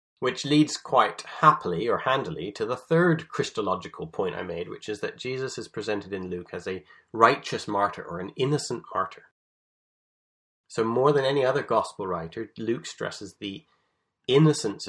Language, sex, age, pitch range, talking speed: English, male, 30-49, 105-175 Hz, 160 wpm